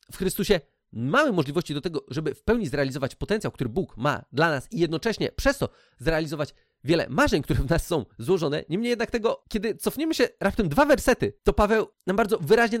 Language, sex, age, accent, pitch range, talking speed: Polish, male, 30-49, native, 155-220 Hz, 195 wpm